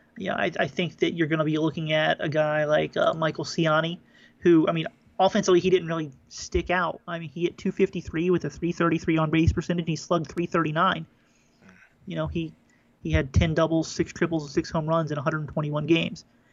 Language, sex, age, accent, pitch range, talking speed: English, male, 30-49, American, 155-175 Hz, 205 wpm